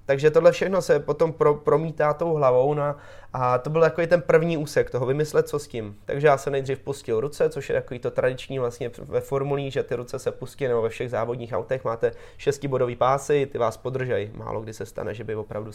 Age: 20-39